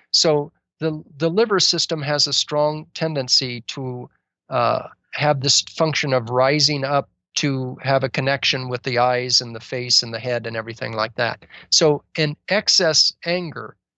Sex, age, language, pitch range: male, 40-59, English, 130-155 Hz